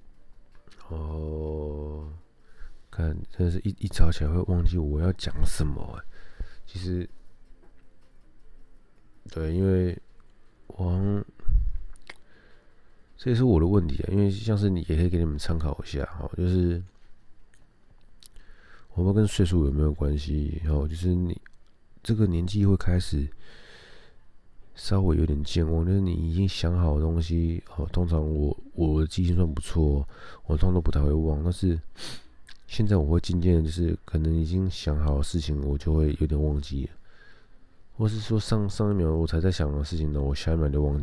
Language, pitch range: Chinese, 75-95 Hz